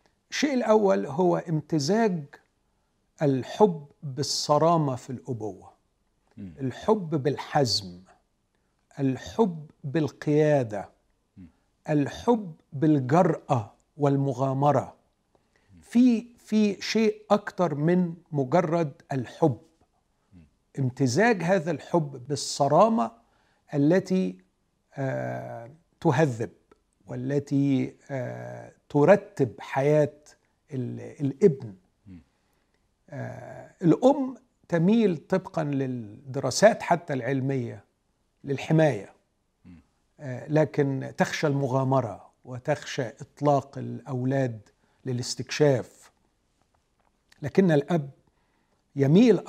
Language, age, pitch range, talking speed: Arabic, 50-69, 125-165 Hz, 60 wpm